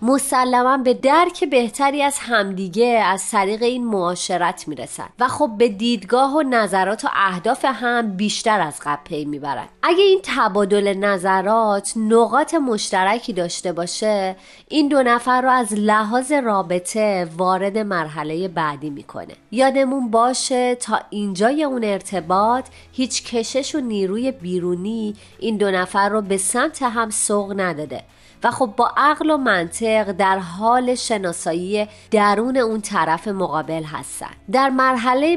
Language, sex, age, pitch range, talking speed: Persian, female, 30-49, 185-245 Hz, 135 wpm